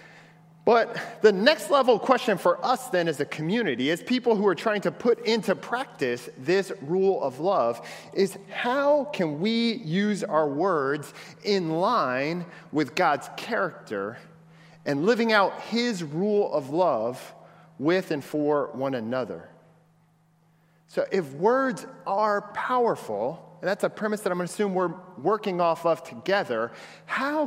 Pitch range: 160-215 Hz